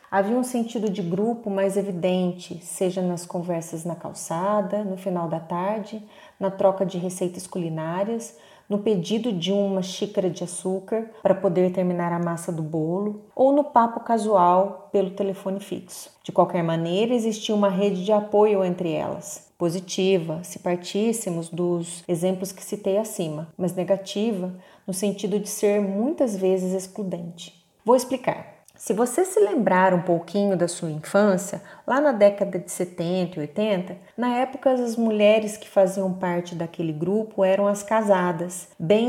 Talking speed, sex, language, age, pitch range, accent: 155 wpm, female, Portuguese, 30-49, 180-215 Hz, Brazilian